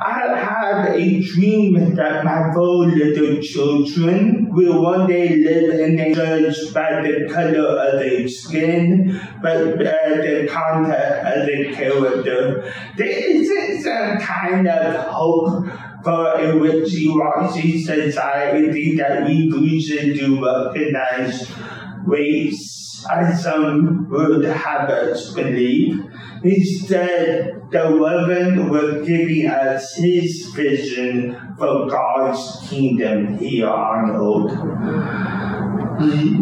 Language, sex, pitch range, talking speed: English, male, 145-180 Hz, 110 wpm